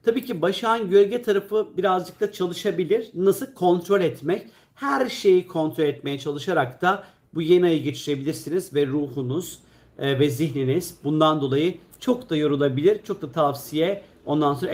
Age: 50-69